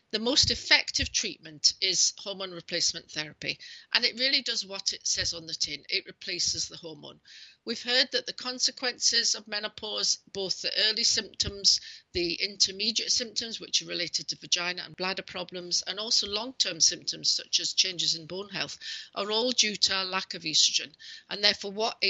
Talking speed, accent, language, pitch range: 175 wpm, British, English, 170-230 Hz